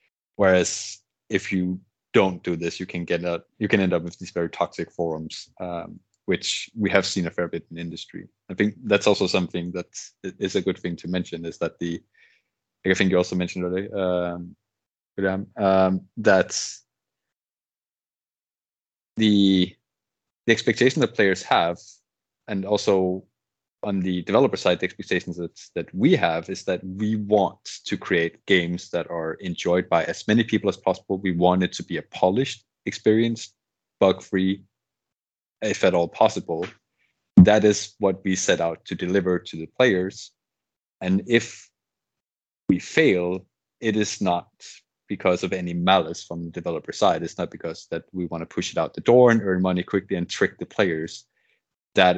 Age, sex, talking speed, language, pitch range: 30-49, male, 170 wpm, English, 85-100 Hz